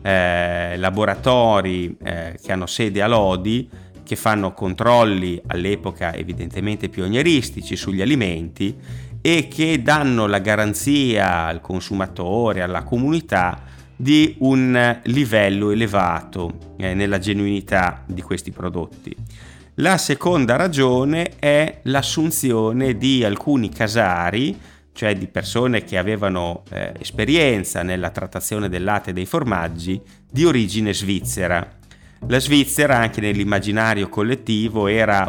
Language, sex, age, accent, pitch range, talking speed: Italian, male, 30-49, native, 95-120 Hz, 110 wpm